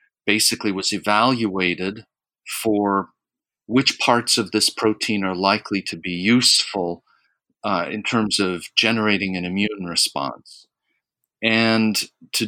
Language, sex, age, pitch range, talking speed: English, male, 40-59, 95-115 Hz, 115 wpm